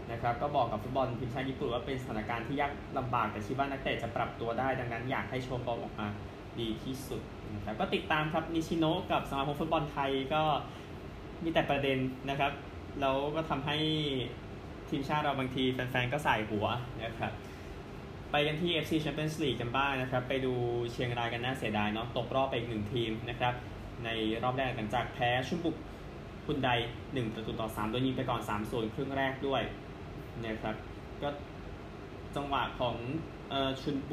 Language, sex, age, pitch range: Thai, male, 20-39, 110-135 Hz